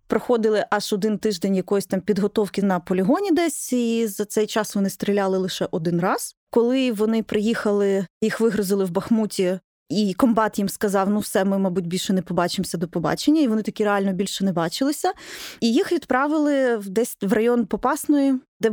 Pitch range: 195-240 Hz